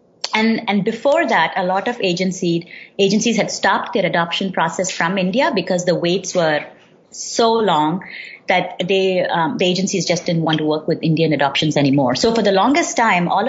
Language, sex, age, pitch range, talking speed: English, female, 30-49, 155-190 Hz, 185 wpm